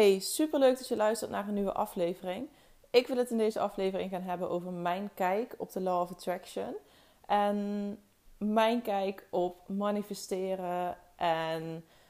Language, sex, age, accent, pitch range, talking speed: Dutch, female, 20-39, Dutch, 180-210 Hz, 155 wpm